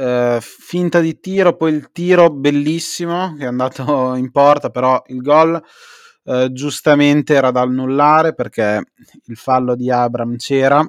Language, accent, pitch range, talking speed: Italian, native, 125-145 Hz, 140 wpm